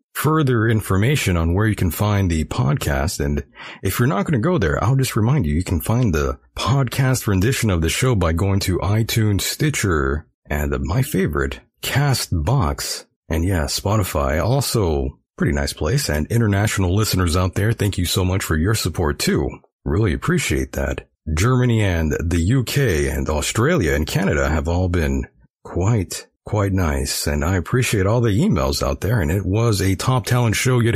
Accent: American